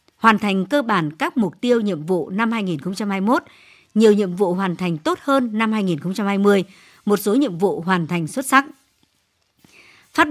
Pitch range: 185-245 Hz